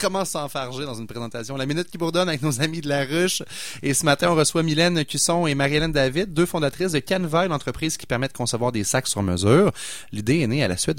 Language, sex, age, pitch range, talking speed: French, male, 30-49, 105-150 Hz, 245 wpm